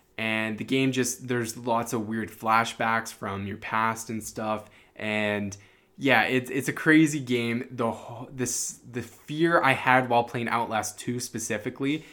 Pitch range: 110-130 Hz